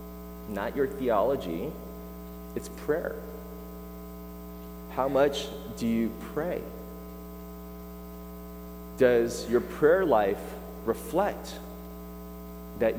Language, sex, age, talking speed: English, male, 30-49, 75 wpm